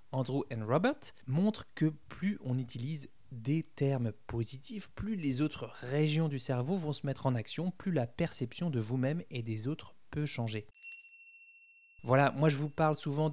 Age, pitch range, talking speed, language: 20-39, 125-155 Hz, 170 wpm, French